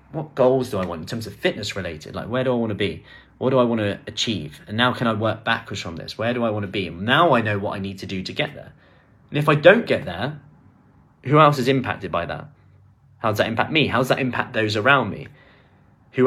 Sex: male